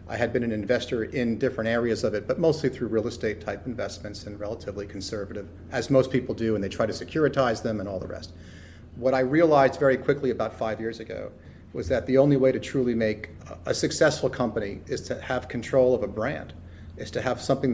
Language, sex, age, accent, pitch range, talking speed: English, male, 30-49, American, 105-130 Hz, 220 wpm